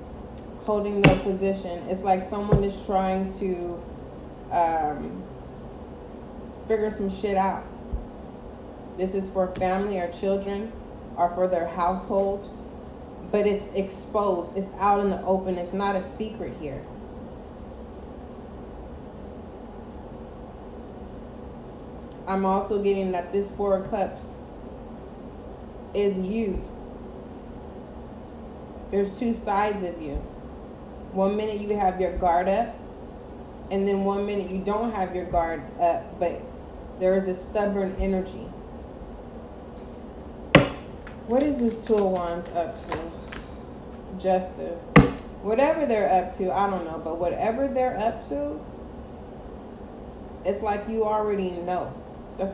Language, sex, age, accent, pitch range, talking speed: English, female, 20-39, American, 185-205 Hz, 115 wpm